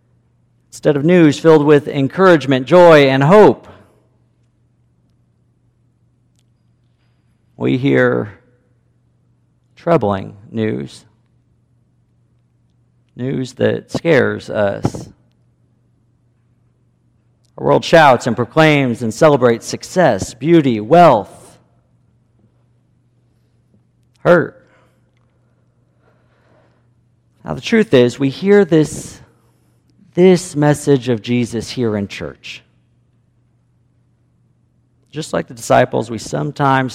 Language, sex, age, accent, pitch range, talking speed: English, male, 40-59, American, 120-150 Hz, 80 wpm